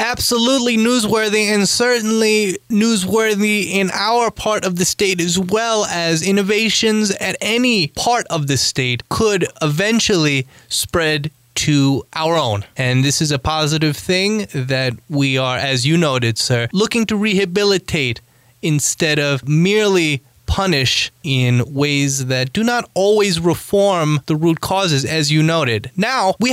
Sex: male